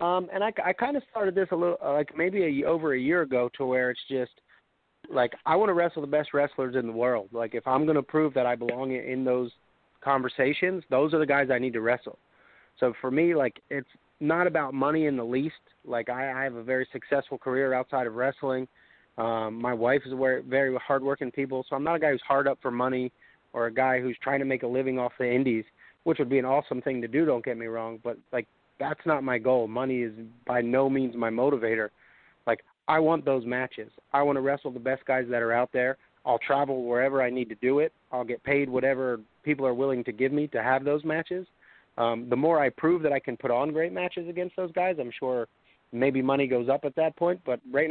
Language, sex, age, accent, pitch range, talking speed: English, male, 30-49, American, 125-145 Hz, 240 wpm